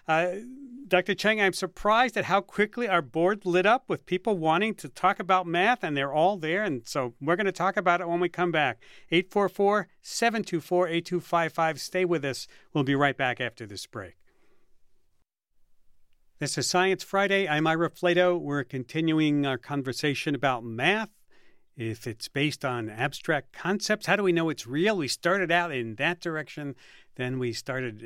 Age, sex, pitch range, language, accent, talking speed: 50-69, male, 140-195 Hz, English, American, 170 wpm